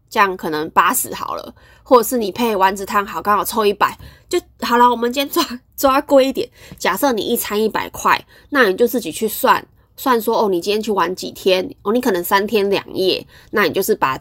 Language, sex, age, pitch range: Chinese, female, 20-39, 180-265 Hz